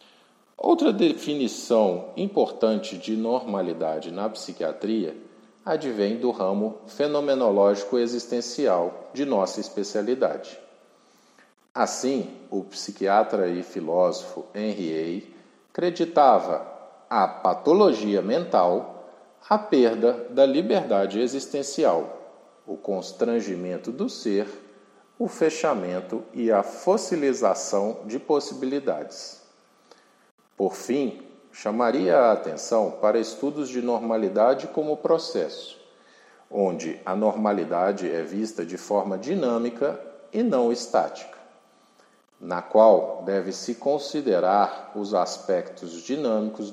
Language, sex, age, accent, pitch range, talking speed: Portuguese, male, 50-69, Brazilian, 100-135 Hz, 90 wpm